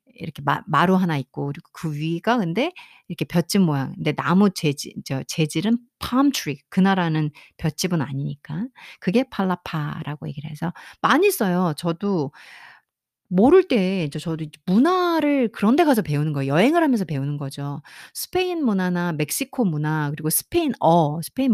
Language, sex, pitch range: Korean, female, 150-235 Hz